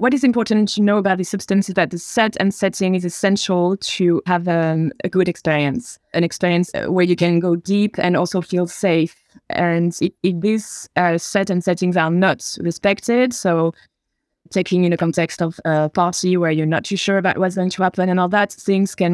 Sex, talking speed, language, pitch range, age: female, 205 wpm, English, 170-195 Hz, 20-39